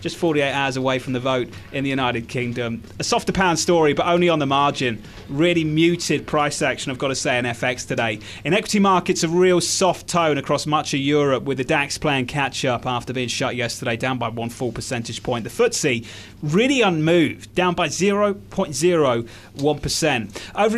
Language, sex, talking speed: English, male, 190 wpm